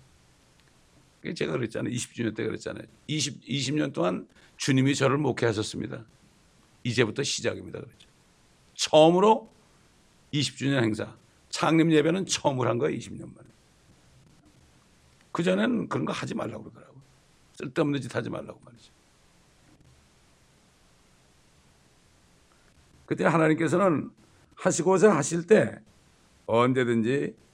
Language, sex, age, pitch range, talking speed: English, male, 60-79, 90-150 Hz, 90 wpm